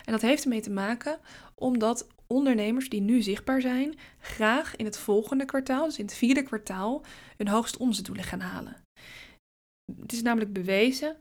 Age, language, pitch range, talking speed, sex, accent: 20-39, Dutch, 205-250 Hz, 160 wpm, female, Dutch